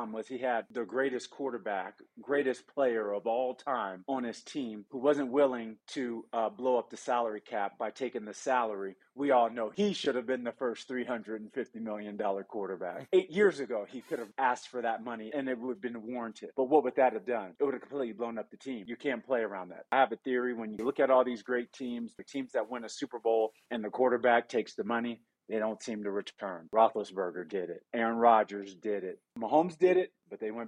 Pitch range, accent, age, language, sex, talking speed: 115-135 Hz, American, 30-49, English, male, 235 wpm